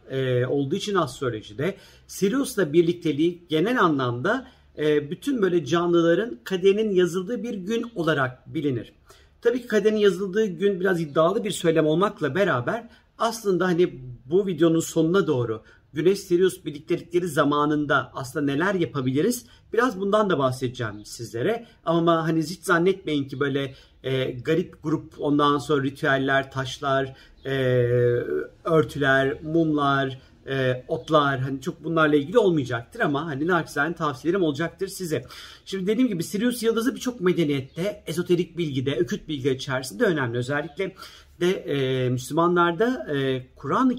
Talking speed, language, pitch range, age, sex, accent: 125 wpm, Turkish, 140-190 Hz, 50-69, male, native